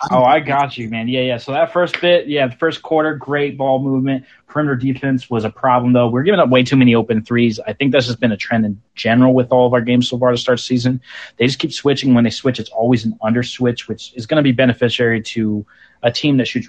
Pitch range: 120-140 Hz